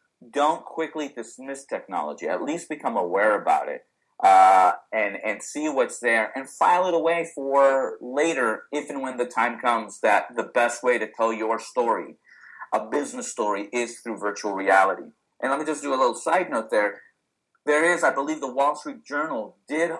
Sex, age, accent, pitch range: male, 30-49, American, 120-155 Hz